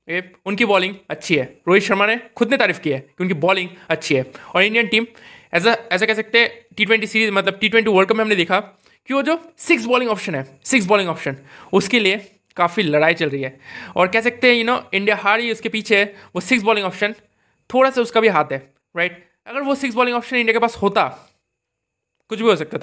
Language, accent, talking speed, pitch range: Hindi, native, 235 wpm, 175-230 Hz